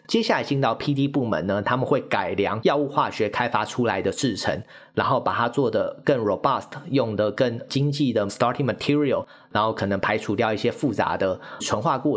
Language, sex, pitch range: Chinese, male, 105-135 Hz